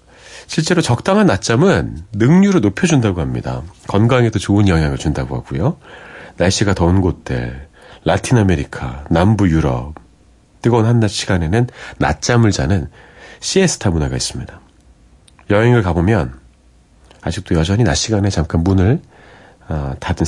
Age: 40-59